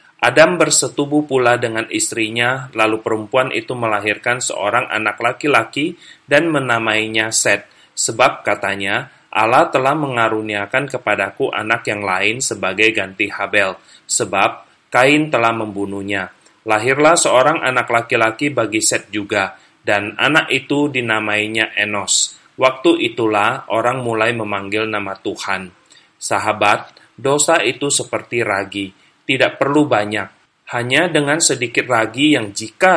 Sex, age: male, 30-49